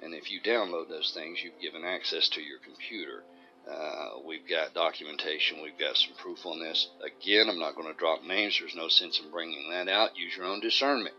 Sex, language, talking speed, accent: male, English, 215 wpm, American